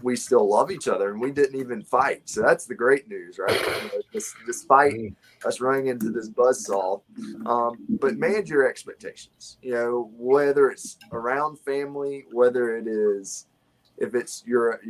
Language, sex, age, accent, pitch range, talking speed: English, male, 20-39, American, 110-145 Hz, 155 wpm